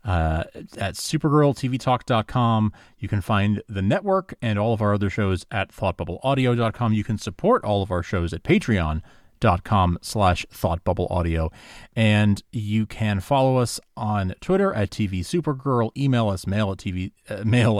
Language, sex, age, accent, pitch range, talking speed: English, male, 30-49, American, 95-125 Hz, 150 wpm